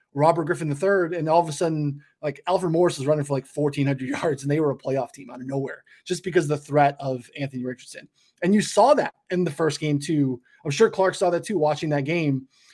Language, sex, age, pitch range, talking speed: English, male, 20-39, 140-175 Hz, 240 wpm